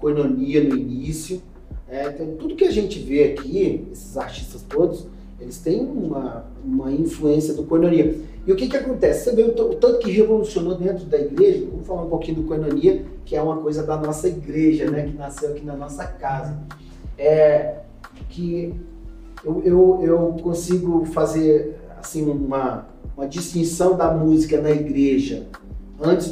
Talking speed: 160 wpm